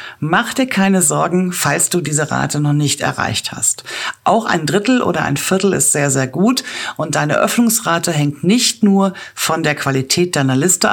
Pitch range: 155-210 Hz